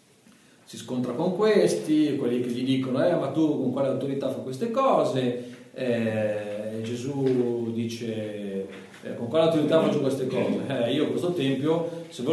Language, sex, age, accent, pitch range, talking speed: Italian, male, 40-59, native, 115-180 Hz, 155 wpm